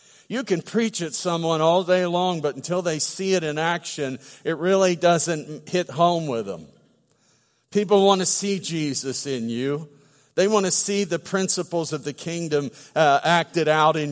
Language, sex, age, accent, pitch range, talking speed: English, male, 50-69, American, 155-195 Hz, 180 wpm